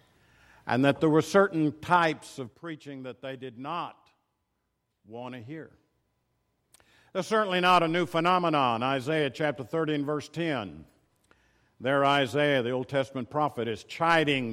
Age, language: 50-69, English